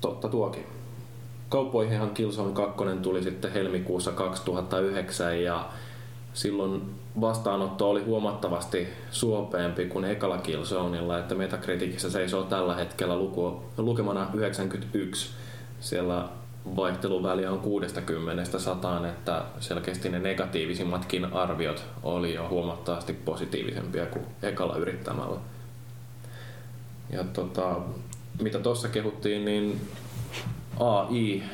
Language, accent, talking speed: Finnish, native, 95 wpm